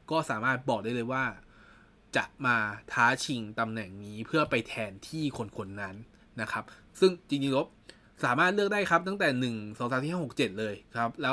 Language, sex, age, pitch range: Thai, male, 20-39, 115-155 Hz